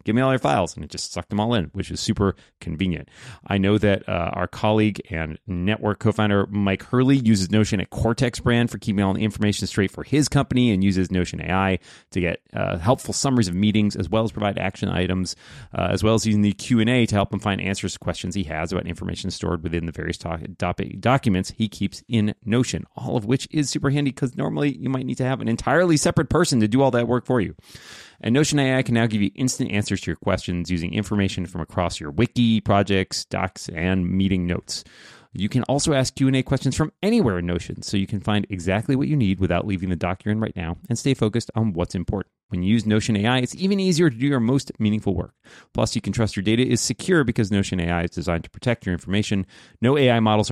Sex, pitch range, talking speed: male, 95-120 Hz, 235 wpm